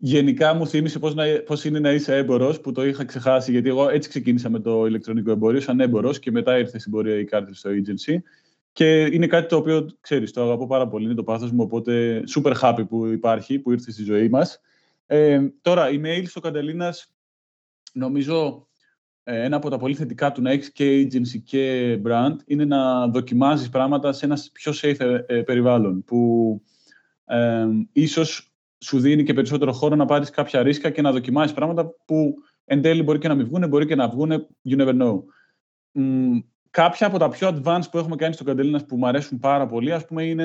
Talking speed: 200 wpm